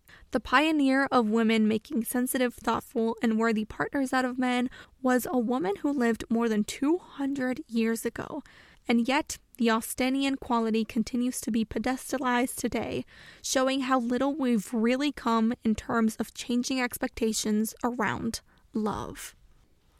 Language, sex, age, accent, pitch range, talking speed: English, female, 10-29, American, 230-275 Hz, 140 wpm